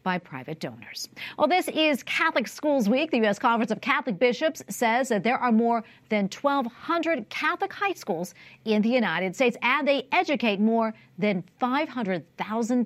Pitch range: 205-290 Hz